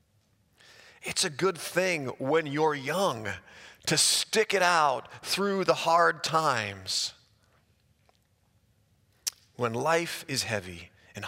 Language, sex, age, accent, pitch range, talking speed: English, male, 40-59, American, 105-160 Hz, 105 wpm